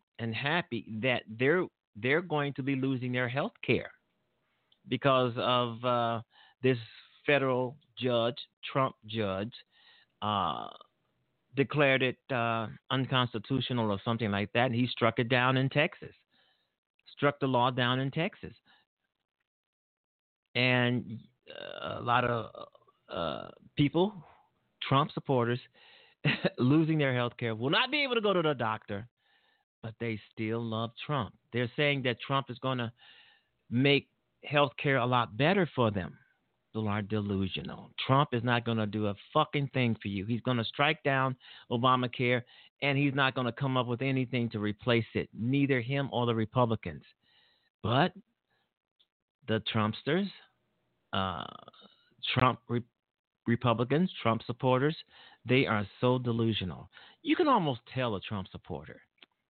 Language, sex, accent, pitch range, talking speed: English, male, American, 115-140 Hz, 140 wpm